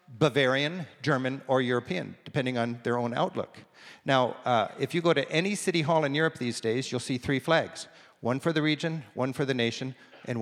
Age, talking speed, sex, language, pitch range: 50-69, 200 wpm, male, English, 135-160 Hz